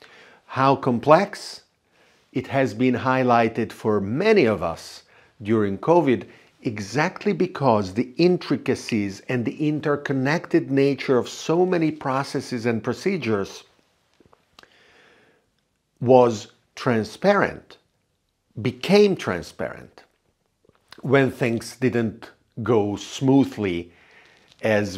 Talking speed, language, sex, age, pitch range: 85 wpm, Italian, male, 50-69, 110-140 Hz